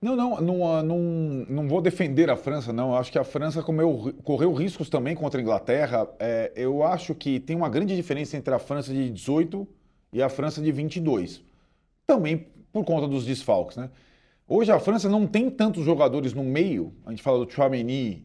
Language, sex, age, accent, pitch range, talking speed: Portuguese, male, 40-59, Brazilian, 140-195 Hz, 205 wpm